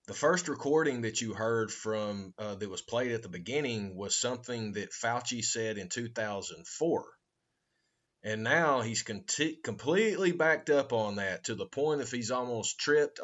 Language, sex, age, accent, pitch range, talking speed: English, male, 30-49, American, 110-140 Hz, 165 wpm